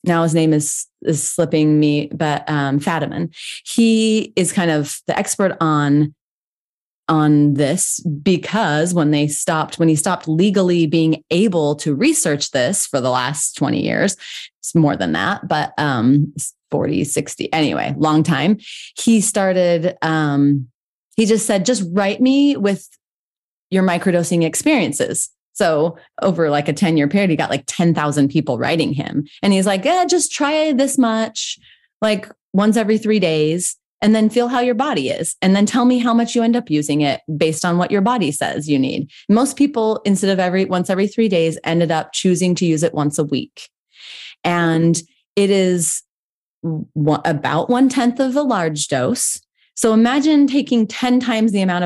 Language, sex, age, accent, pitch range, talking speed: English, female, 30-49, American, 155-220 Hz, 170 wpm